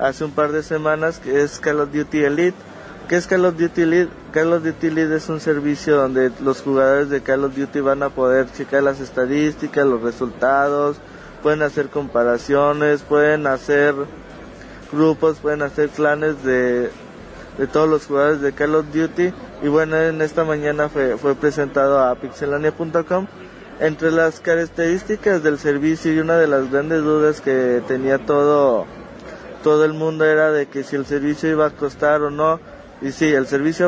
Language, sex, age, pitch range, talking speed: Spanish, male, 20-39, 140-160 Hz, 175 wpm